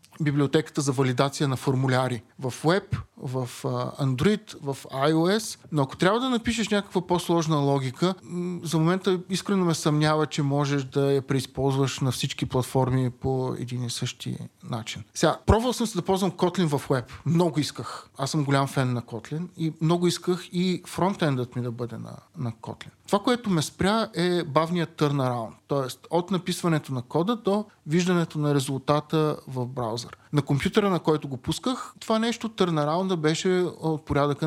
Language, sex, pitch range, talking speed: Bulgarian, male, 135-180 Hz, 165 wpm